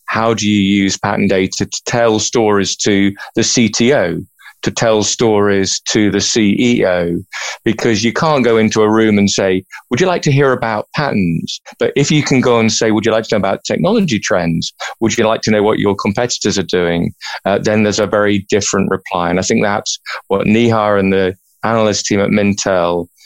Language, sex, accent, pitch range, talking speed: English, male, British, 95-115 Hz, 200 wpm